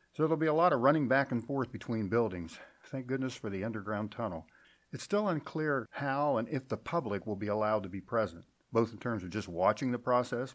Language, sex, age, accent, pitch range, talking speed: English, male, 50-69, American, 105-135 Hz, 230 wpm